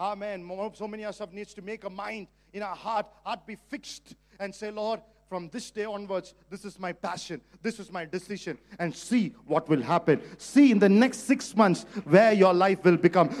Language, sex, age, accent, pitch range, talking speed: English, male, 50-69, Indian, 145-205 Hz, 215 wpm